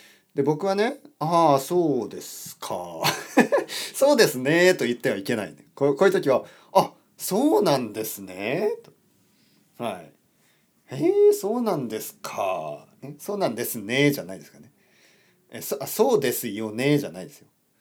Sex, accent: male, native